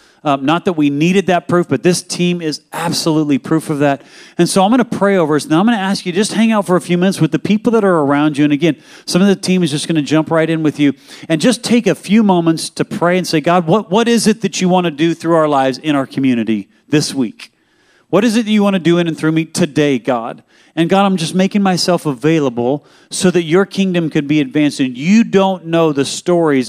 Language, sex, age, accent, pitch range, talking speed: English, male, 40-59, American, 135-180 Hz, 270 wpm